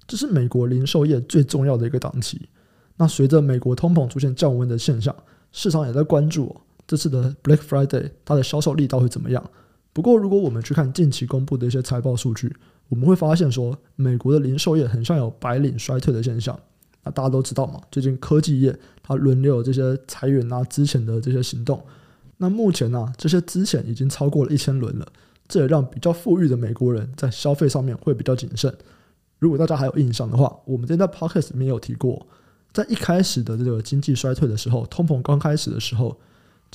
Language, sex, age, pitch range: Chinese, male, 20-39, 125-155 Hz